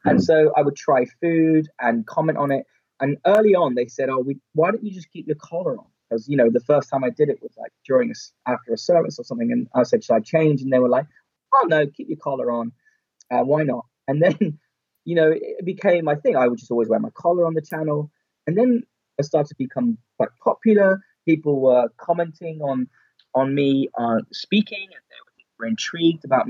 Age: 20-39